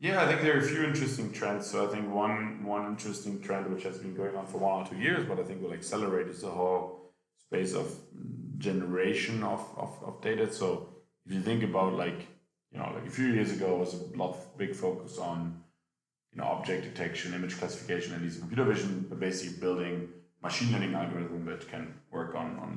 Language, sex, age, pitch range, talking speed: English, male, 20-39, 85-100 Hz, 215 wpm